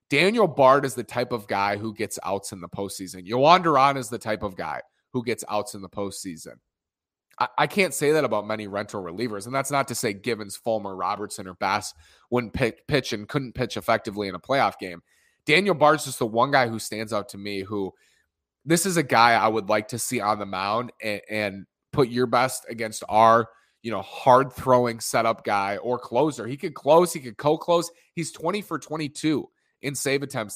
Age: 30-49